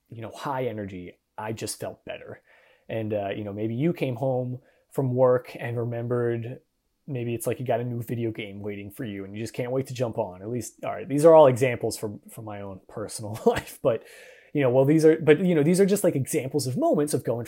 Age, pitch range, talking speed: 30-49, 110-140 Hz, 245 wpm